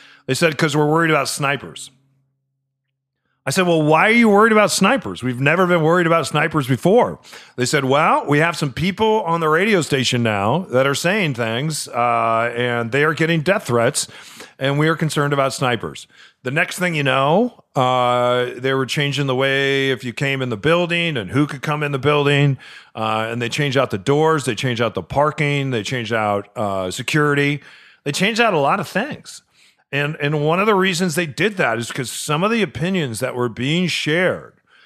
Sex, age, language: male, 40-59, English